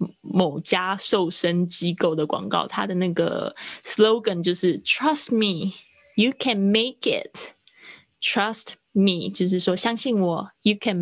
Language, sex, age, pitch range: Chinese, female, 20-39, 180-215 Hz